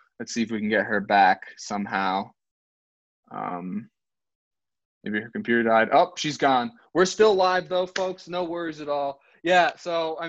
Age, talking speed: 20-39, 170 wpm